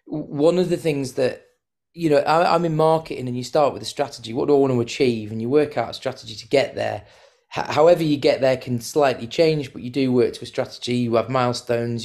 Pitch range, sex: 115-140 Hz, male